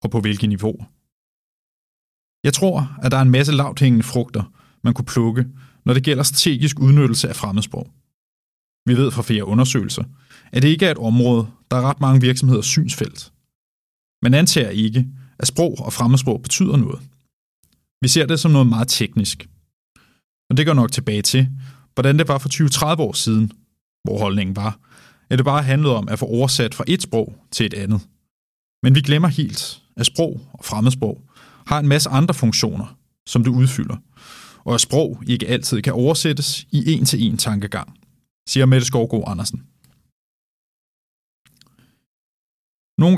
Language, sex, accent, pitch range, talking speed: Danish, male, native, 115-140 Hz, 170 wpm